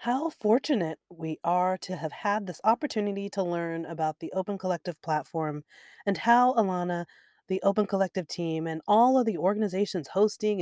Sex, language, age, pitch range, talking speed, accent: female, English, 30-49, 165-210 Hz, 165 wpm, American